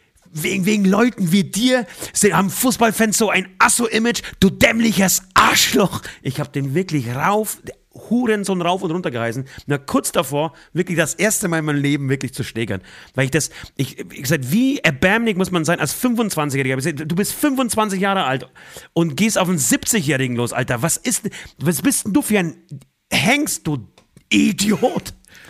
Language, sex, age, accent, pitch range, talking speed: German, male, 40-59, German, 140-200 Hz, 170 wpm